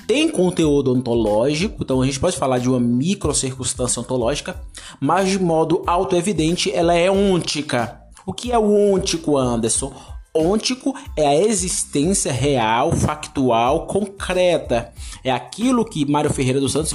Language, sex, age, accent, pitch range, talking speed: Portuguese, male, 20-39, Brazilian, 125-180 Hz, 140 wpm